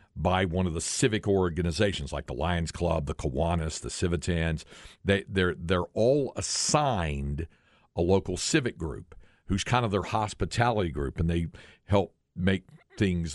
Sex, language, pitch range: male, English, 85-105 Hz